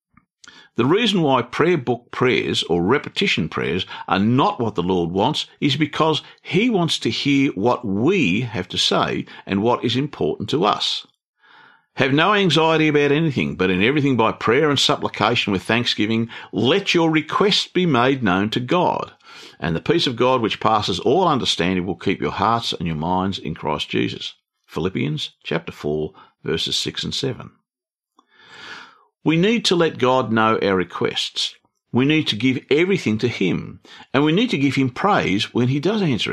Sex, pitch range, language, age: male, 100-160 Hz, English, 50-69